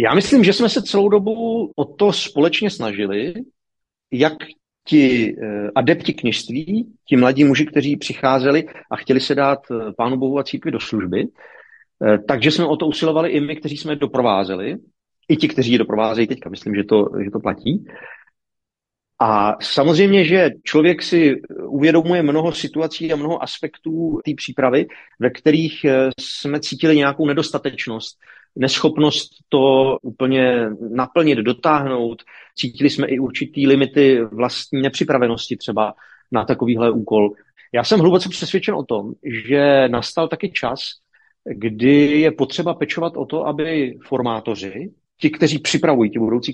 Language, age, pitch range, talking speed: Czech, 40-59, 125-160 Hz, 145 wpm